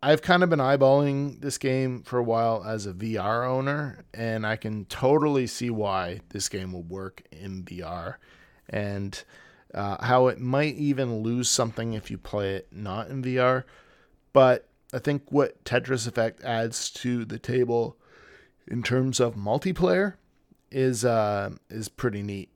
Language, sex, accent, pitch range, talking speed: English, male, American, 100-130 Hz, 160 wpm